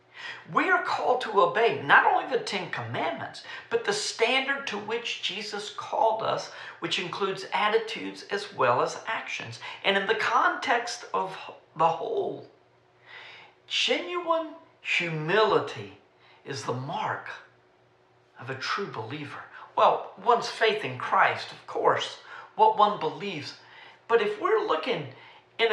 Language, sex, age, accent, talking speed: English, male, 50-69, American, 130 wpm